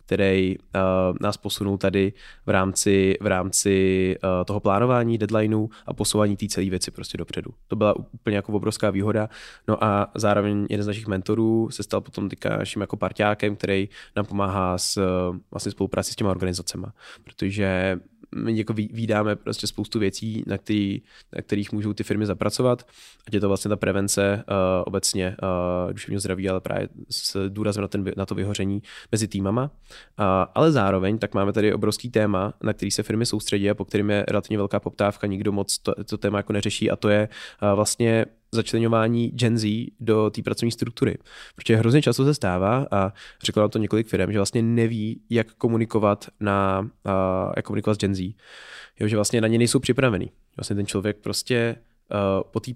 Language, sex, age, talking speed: Czech, male, 20-39, 180 wpm